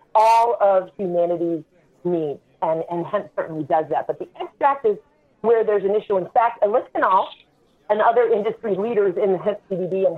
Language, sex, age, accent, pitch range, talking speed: English, female, 40-59, American, 185-235 Hz, 175 wpm